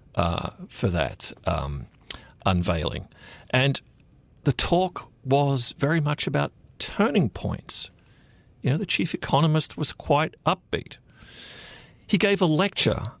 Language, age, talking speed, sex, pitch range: English, 50-69, 120 wpm, male, 95-140 Hz